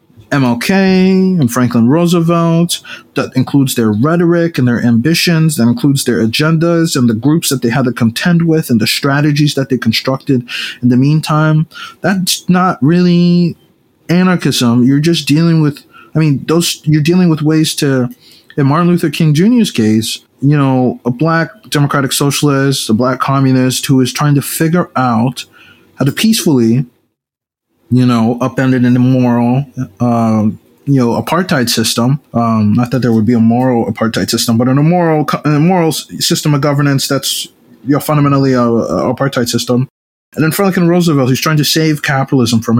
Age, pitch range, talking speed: 20-39, 120-155 Hz, 165 wpm